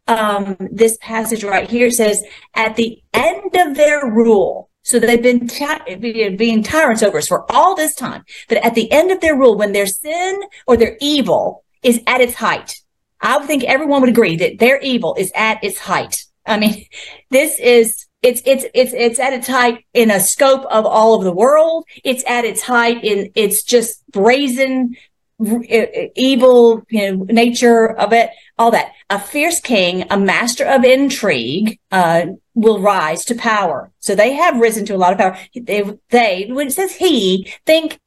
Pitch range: 215-260 Hz